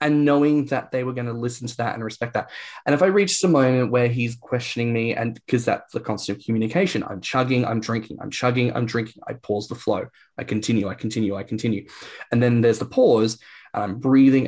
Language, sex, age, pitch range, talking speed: English, male, 10-29, 110-135 Hz, 230 wpm